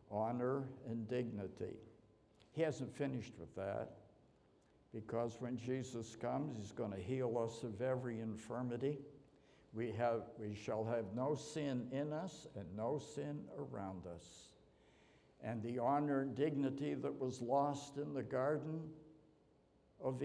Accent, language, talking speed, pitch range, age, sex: American, English, 130 wpm, 110-135 Hz, 60-79, male